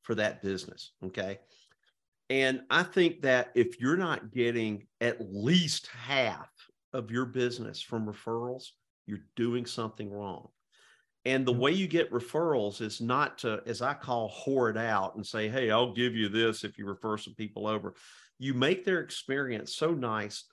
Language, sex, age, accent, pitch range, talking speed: English, male, 50-69, American, 115-145 Hz, 170 wpm